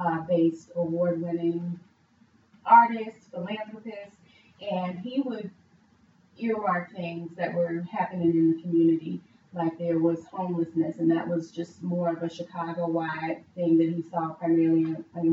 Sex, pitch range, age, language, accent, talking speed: female, 170-200 Hz, 30-49, English, American, 135 wpm